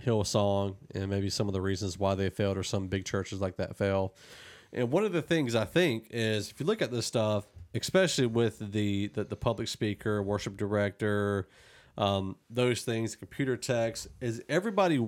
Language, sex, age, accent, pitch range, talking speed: English, male, 40-59, American, 100-135 Hz, 185 wpm